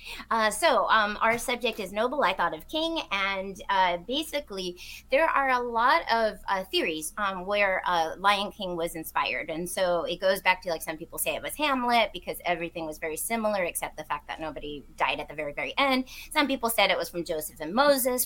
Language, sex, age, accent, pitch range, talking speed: English, female, 30-49, American, 180-230 Hz, 215 wpm